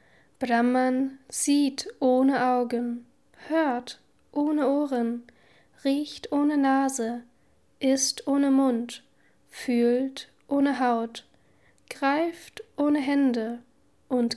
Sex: female